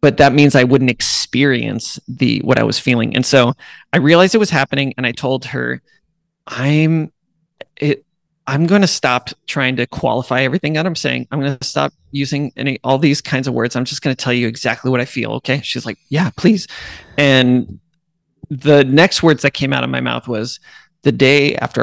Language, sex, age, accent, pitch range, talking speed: English, male, 30-49, American, 125-150 Hz, 205 wpm